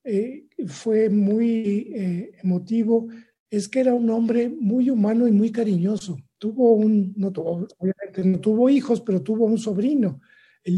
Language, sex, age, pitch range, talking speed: Spanish, male, 50-69, 180-220 Hz, 150 wpm